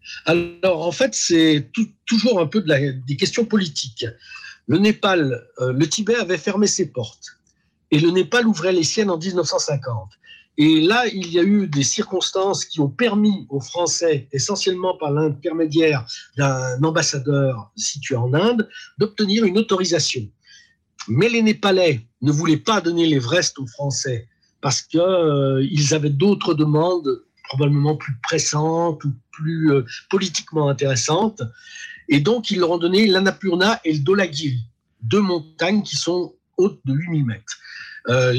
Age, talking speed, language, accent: 50-69, 155 wpm, French, French